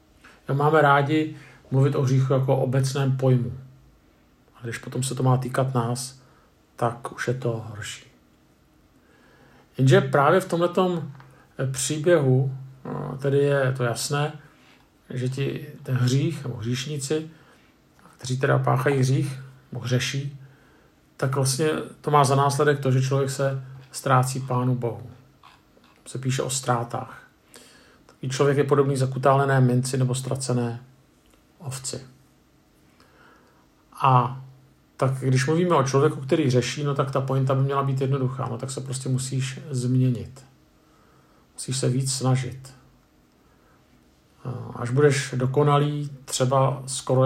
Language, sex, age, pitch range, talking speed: Czech, male, 50-69, 125-140 Hz, 125 wpm